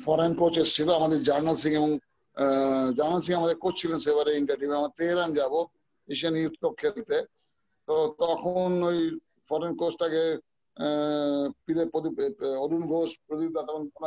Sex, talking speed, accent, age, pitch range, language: male, 45 wpm, Indian, 50-69, 150-175 Hz, English